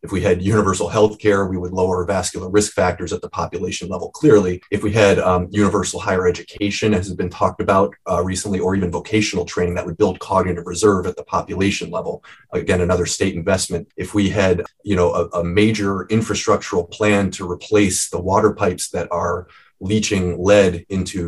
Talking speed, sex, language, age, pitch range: 190 wpm, male, English, 30-49, 90-105 Hz